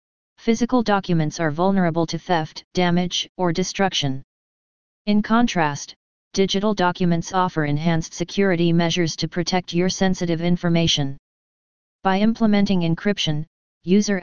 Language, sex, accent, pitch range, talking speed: English, female, American, 165-190 Hz, 110 wpm